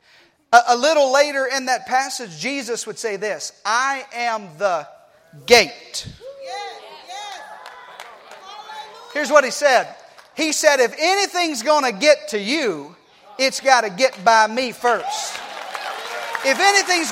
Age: 40-59